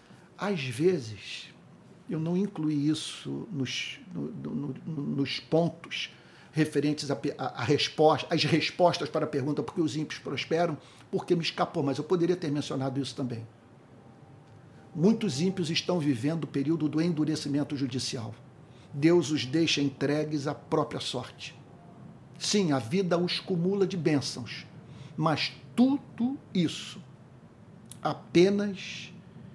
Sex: male